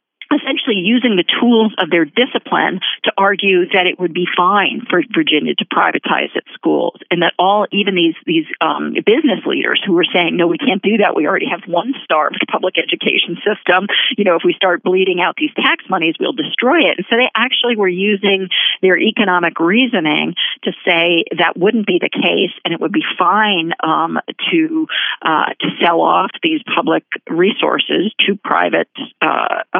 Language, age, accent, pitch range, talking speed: English, 50-69, American, 175-230 Hz, 180 wpm